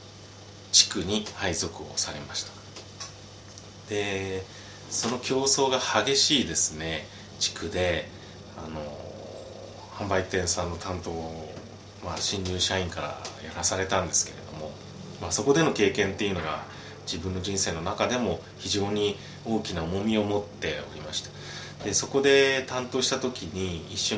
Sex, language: male, Japanese